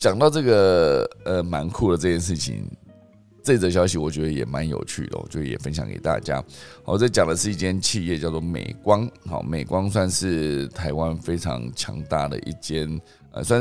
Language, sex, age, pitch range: Chinese, male, 20-39, 80-105 Hz